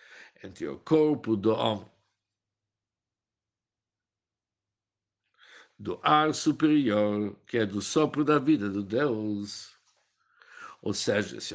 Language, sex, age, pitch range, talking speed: Portuguese, male, 60-79, 105-150 Hz, 100 wpm